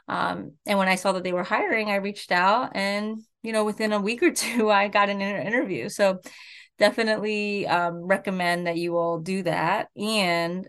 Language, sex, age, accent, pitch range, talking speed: English, female, 20-39, American, 175-205 Hz, 195 wpm